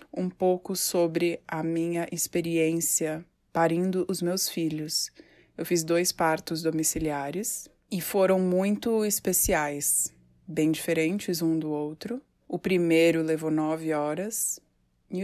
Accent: Brazilian